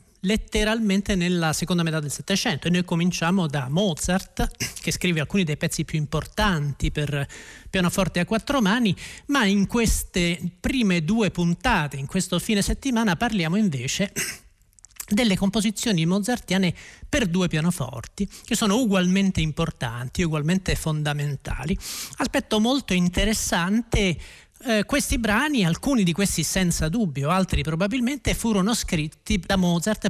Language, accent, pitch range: Italian, native, 155-210 Hz